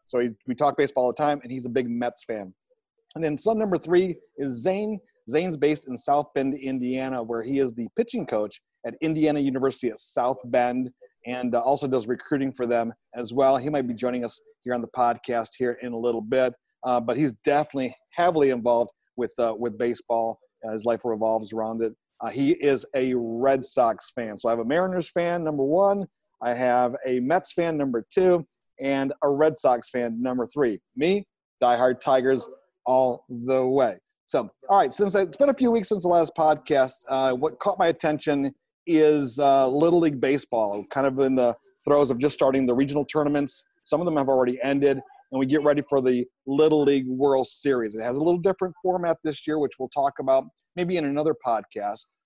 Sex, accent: male, American